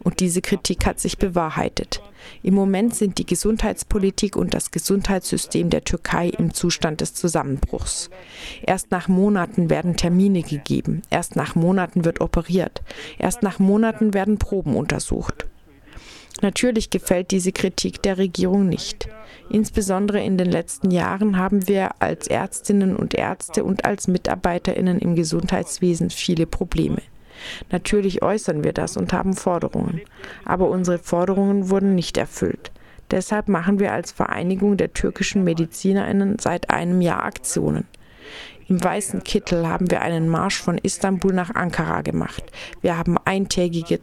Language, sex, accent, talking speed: German, female, German, 140 wpm